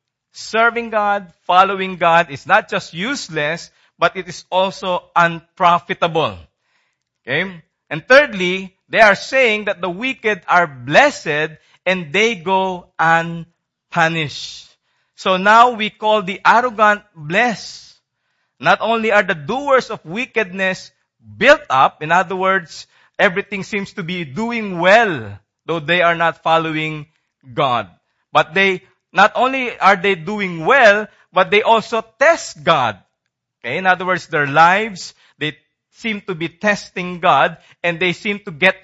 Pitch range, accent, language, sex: 165-210 Hz, Filipino, English, male